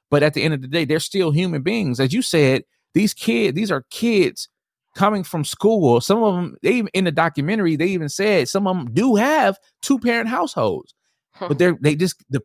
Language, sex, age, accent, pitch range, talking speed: English, male, 20-39, American, 115-180 Hz, 215 wpm